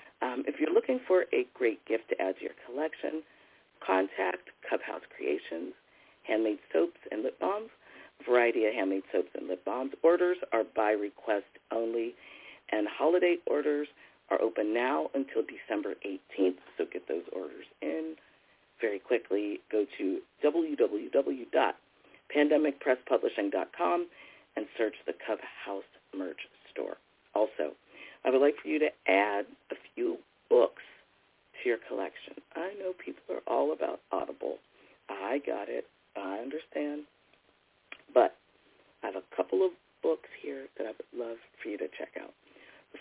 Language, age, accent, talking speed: English, 40-59, American, 135 wpm